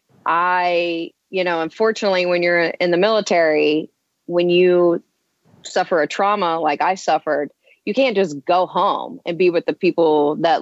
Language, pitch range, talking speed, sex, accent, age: English, 165-195 Hz, 160 wpm, female, American, 30-49